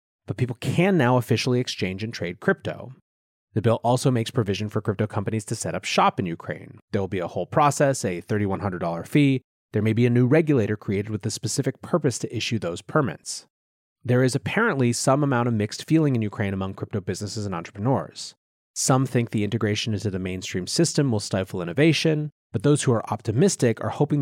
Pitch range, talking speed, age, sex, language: 105-135 Hz, 200 wpm, 30-49, male, English